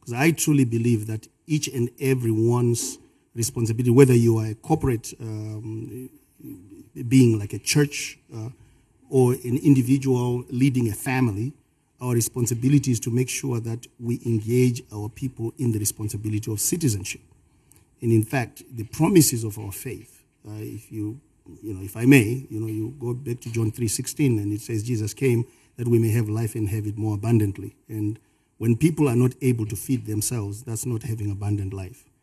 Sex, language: male, English